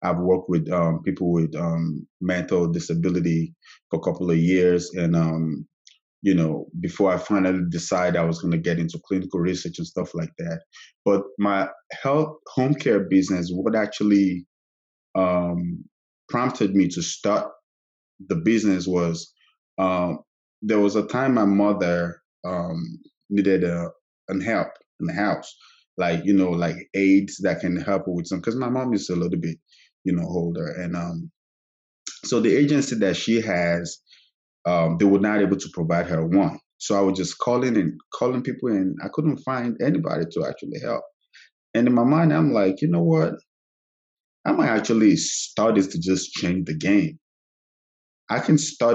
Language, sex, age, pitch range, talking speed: English, male, 20-39, 85-105 Hz, 170 wpm